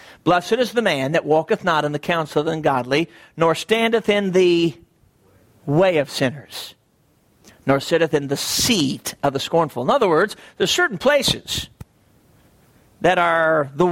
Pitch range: 135-195 Hz